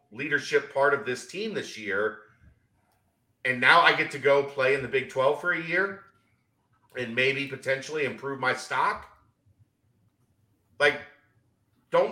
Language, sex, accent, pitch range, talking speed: English, male, American, 115-160 Hz, 145 wpm